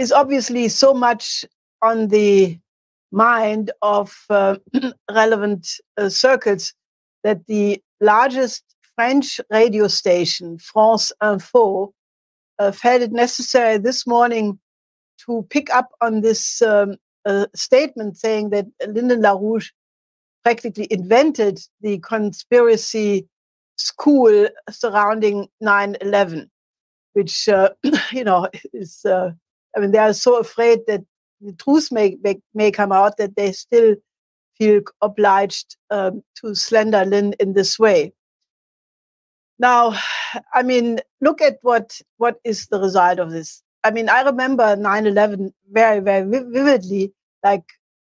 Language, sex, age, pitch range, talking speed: English, female, 60-79, 195-235 Hz, 120 wpm